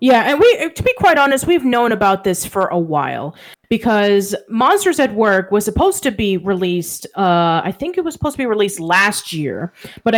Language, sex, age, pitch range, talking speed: English, female, 30-49, 180-225 Hz, 205 wpm